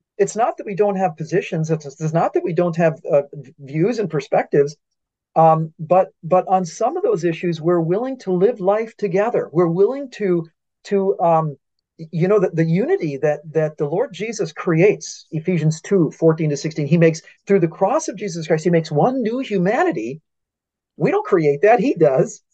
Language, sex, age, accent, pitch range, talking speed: English, male, 40-59, American, 160-205 Hz, 190 wpm